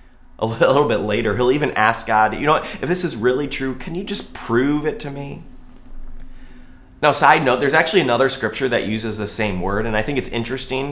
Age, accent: 30-49, American